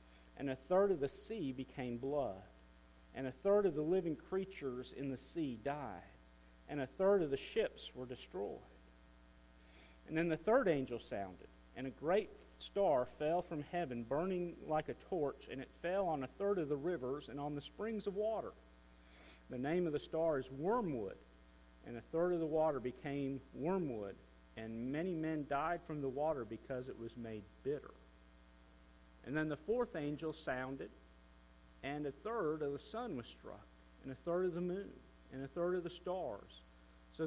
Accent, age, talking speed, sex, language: American, 50-69, 180 wpm, male, English